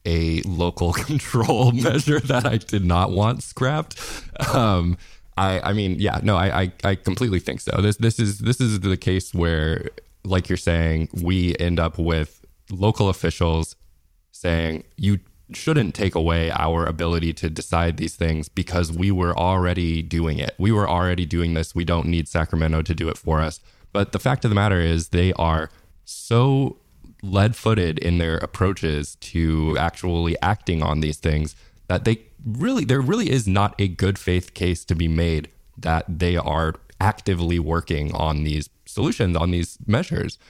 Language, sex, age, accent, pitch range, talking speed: English, male, 20-39, American, 80-100 Hz, 170 wpm